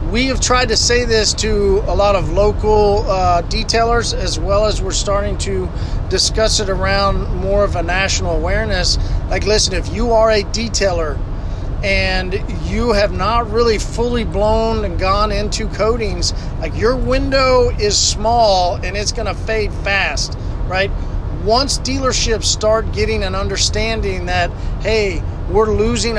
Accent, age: American, 40-59